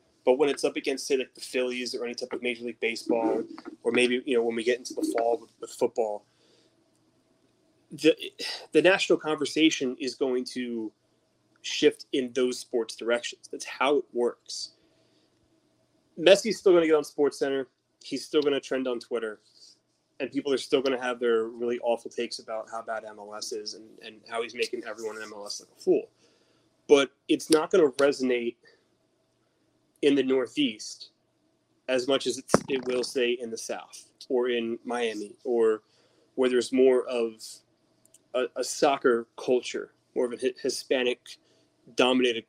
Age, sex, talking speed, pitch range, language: 20-39, male, 170 wpm, 120-160 Hz, English